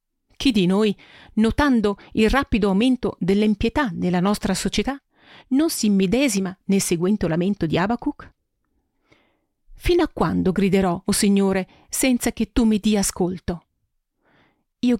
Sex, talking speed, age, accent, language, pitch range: female, 130 wpm, 40-59, native, Italian, 185-245 Hz